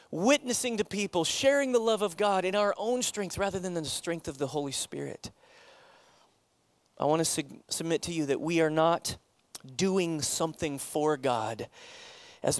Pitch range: 145-195 Hz